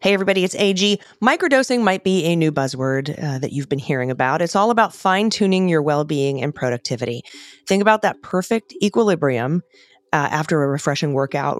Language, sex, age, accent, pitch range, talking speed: English, female, 30-49, American, 145-190 Hz, 175 wpm